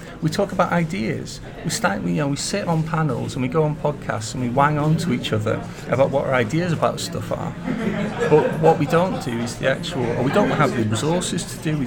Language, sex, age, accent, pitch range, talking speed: English, male, 40-59, British, 120-150 Hz, 250 wpm